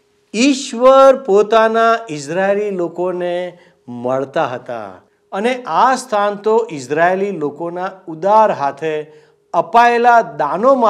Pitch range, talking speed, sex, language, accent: 155-230 Hz, 55 wpm, male, Gujarati, native